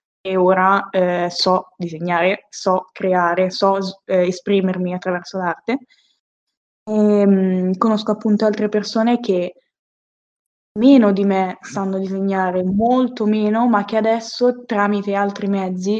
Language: Italian